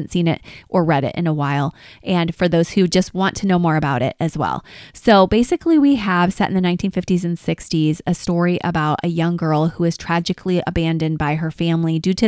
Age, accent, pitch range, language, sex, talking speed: 20-39, American, 170-205 Hz, English, female, 225 wpm